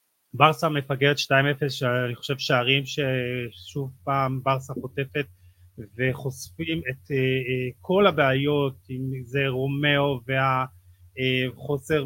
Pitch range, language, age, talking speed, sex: 130-175 Hz, Hebrew, 30-49, 90 wpm, male